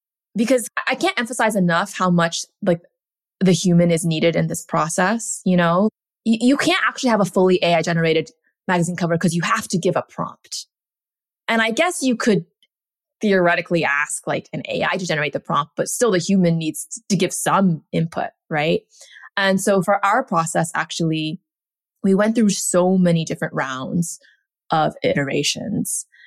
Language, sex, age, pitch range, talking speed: English, female, 20-39, 165-215 Hz, 170 wpm